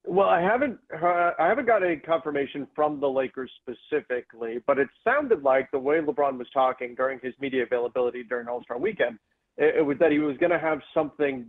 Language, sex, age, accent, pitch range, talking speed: English, male, 40-59, American, 125-150 Hz, 205 wpm